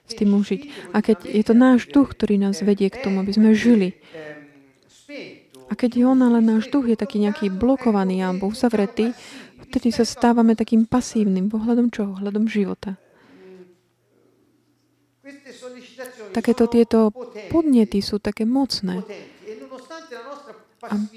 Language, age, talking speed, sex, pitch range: Slovak, 30-49, 130 wpm, female, 205-240 Hz